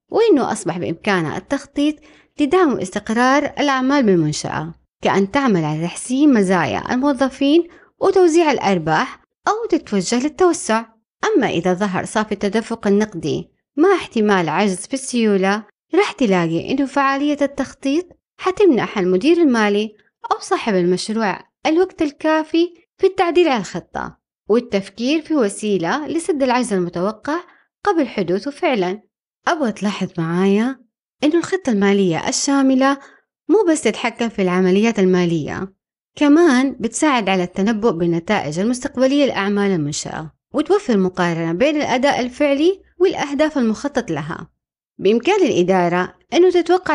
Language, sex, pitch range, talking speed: Arabic, female, 190-305 Hz, 115 wpm